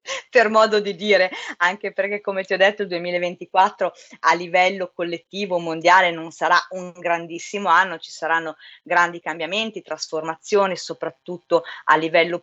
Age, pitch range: 30-49, 170-210 Hz